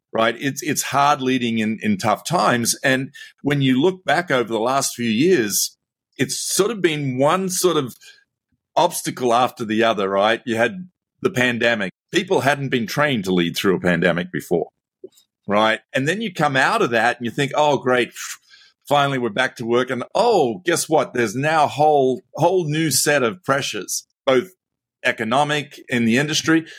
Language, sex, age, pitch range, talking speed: English, male, 50-69, 120-150 Hz, 180 wpm